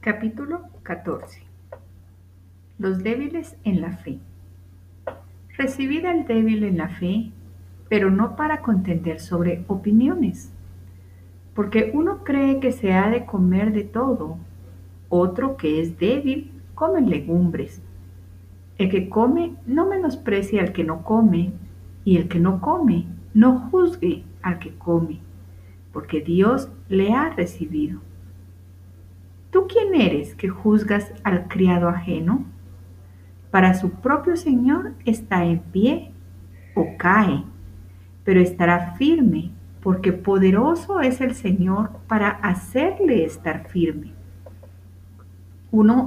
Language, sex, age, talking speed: Spanish, female, 50-69, 115 wpm